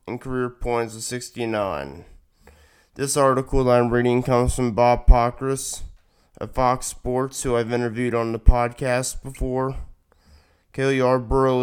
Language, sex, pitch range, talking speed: English, male, 115-130 Hz, 135 wpm